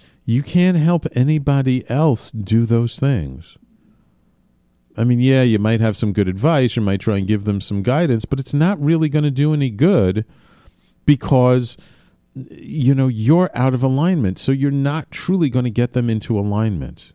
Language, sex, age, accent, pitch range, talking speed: English, male, 50-69, American, 95-135 Hz, 195 wpm